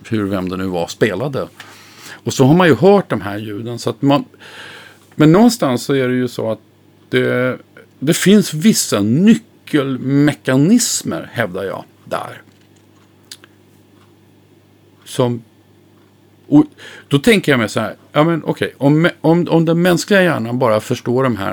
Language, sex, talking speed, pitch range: Swedish, male, 155 wpm, 110-145 Hz